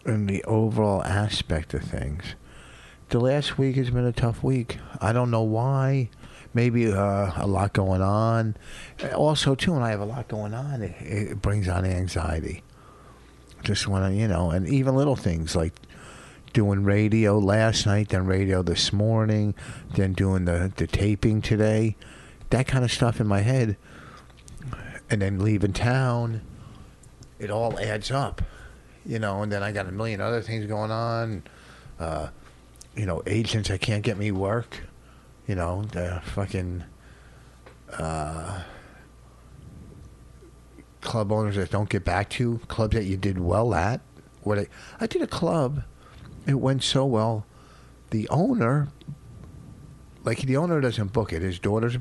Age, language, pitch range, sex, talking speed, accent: 50-69, English, 95-120 Hz, male, 155 wpm, American